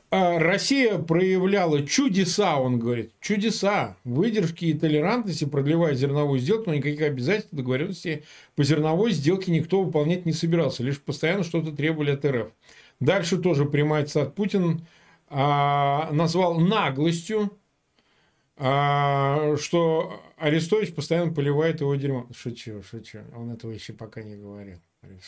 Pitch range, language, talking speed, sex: 135-180 Hz, Russian, 125 wpm, male